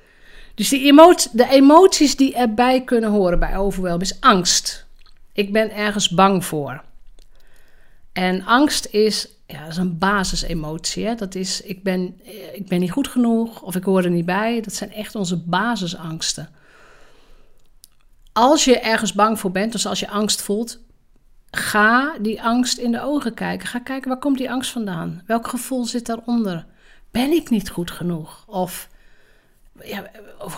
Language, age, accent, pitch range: Dutch, 50-69, Dutch, 185-245 Hz